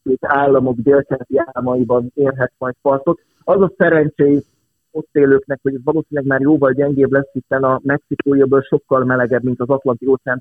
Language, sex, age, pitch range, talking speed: Hungarian, male, 30-49, 125-145 Hz, 150 wpm